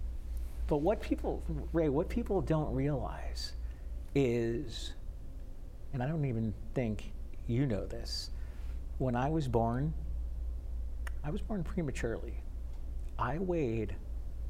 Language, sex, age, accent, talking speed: English, male, 50-69, American, 110 wpm